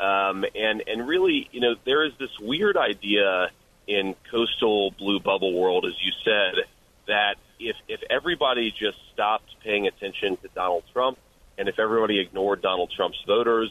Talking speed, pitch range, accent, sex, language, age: 160 wpm, 100-130 Hz, American, male, English, 30-49